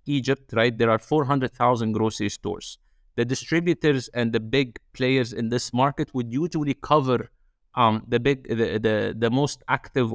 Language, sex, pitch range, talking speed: English, male, 115-135 Hz, 160 wpm